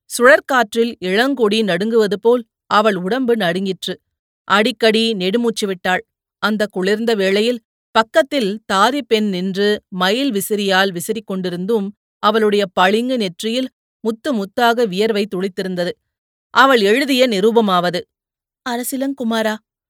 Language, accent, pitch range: Tamil, native, 225-245 Hz